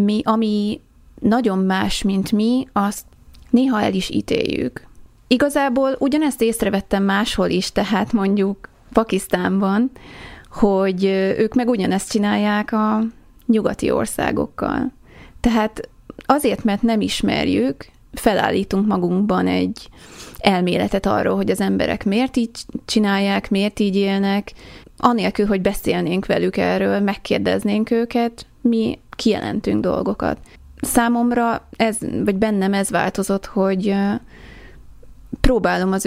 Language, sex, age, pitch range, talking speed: Hungarian, female, 30-49, 190-225 Hz, 110 wpm